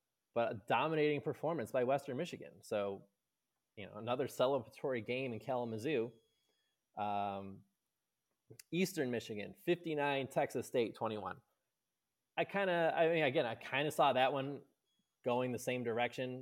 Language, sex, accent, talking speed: English, male, American, 140 wpm